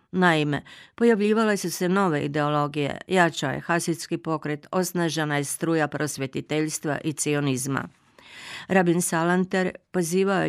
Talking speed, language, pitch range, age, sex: 110 wpm, Croatian, 150-175 Hz, 50-69, female